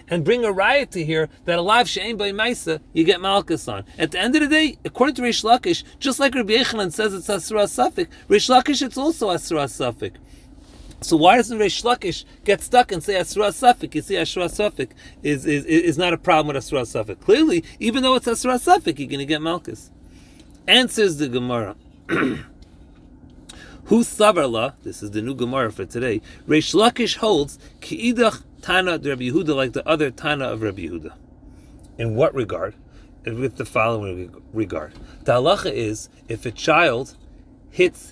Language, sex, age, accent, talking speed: English, male, 40-59, American, 165 wpm